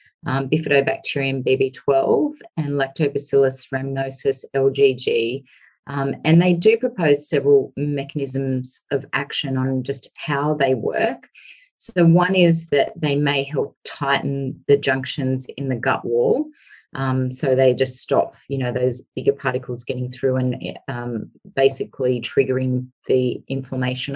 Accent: Australian